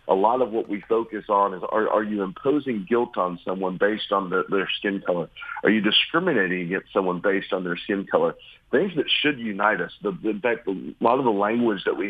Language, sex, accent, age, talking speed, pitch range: English, male, American, 40-59, 225 wpm, 100-115 Hz